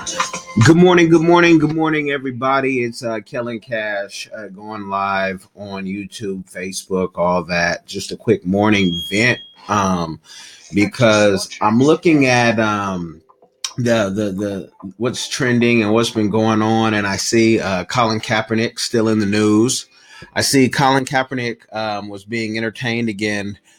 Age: 30-49